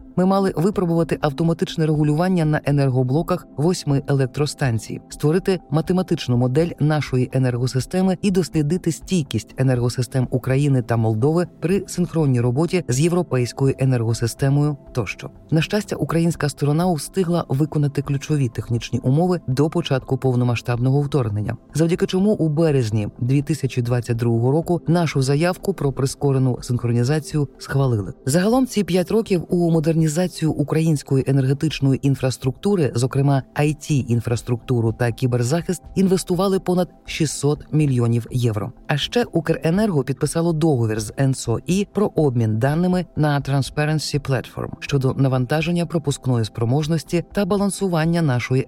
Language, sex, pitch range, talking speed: Ukrainian, female, 130-170 Hz, 115 wpm